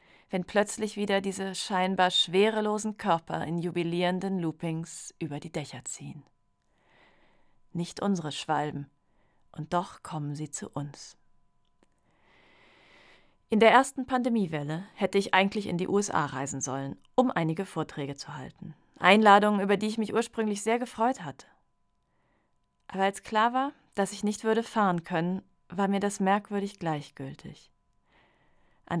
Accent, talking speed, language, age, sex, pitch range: German, 135 wpm, German, 40-59, female, 165-205 Hz